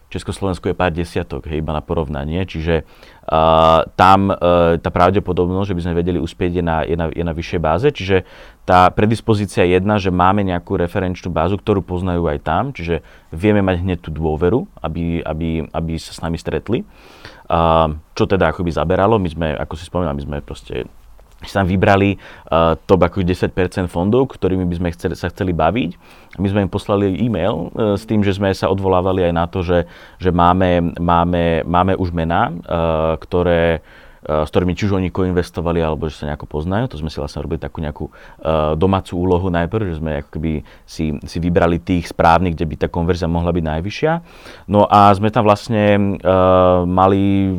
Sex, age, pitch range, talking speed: male, 30-49, 80-95 Hz, 180 wpm